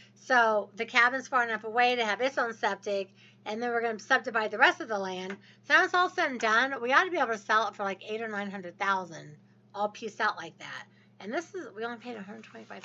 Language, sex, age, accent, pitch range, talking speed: English, female, 40-59, American, 200-270 Hz, 270 wpm